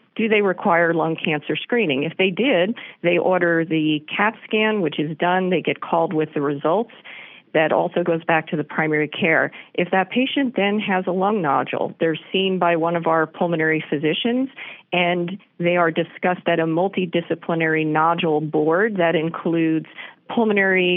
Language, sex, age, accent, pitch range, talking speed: English, female, 40-59, American, 155-180 Hz, 170 wpm